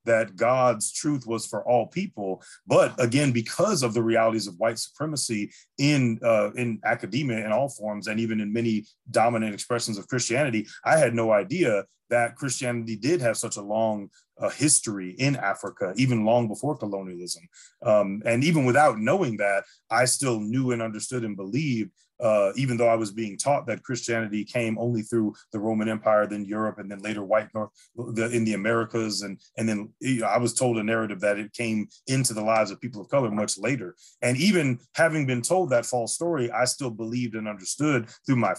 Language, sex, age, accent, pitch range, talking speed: English, male, 30-49, American, 110-125 Hz, 190 wpm